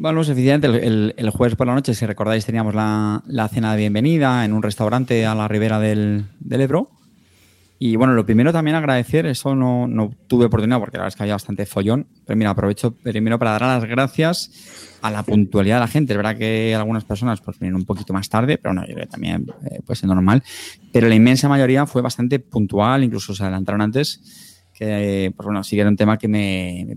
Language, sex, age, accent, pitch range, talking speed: Spanish, male, 20-39, Spanish, 105-130 Hz, 225 wpm